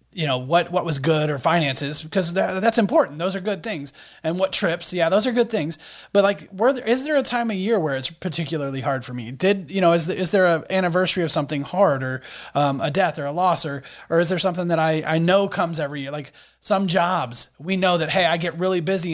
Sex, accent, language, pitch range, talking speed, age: male, American, English, 155-195 Hz, 255 wpm, 30-49